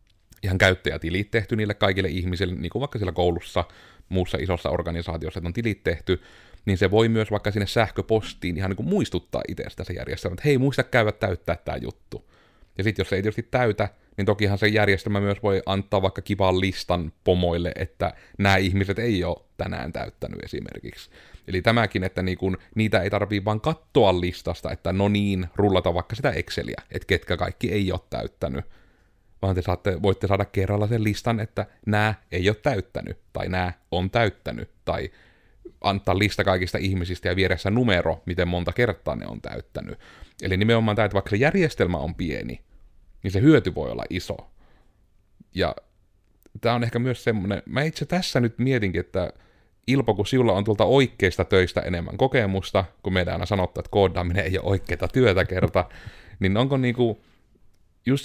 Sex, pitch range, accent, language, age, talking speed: male, 90-110 Hz, native, Finnish, 30-49, 175 wpm